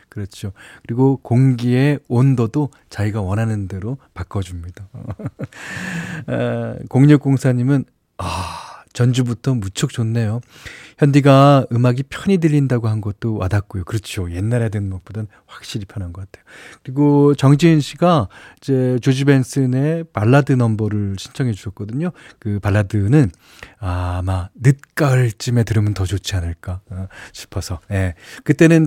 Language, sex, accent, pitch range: Korean, male, native, 105-145 Hz